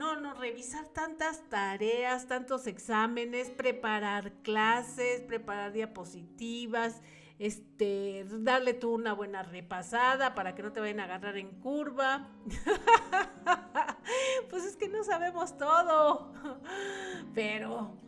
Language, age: Spanish, 40-59